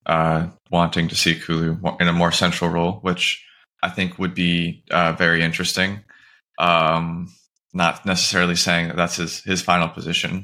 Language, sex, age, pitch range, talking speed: English, male, 20-39, 85-95 Hz, 160 wpm